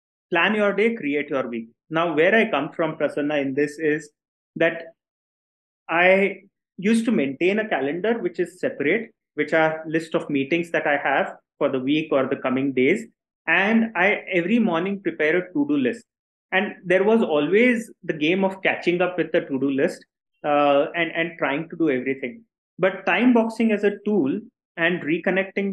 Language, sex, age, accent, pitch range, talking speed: English, male, 30-49, Indian, 155-200 Hz, 175 wpm